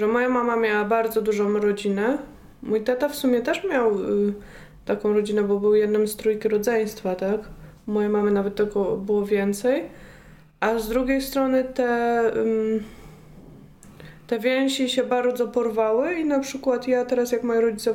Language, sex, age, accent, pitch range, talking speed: Polish, female, 20-39, native, 210-240 Hz, 155 wpm